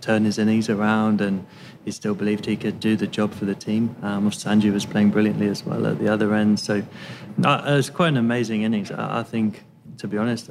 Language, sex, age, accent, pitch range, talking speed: English, male, 20-39, British, 105-115 Hz, 235 wpm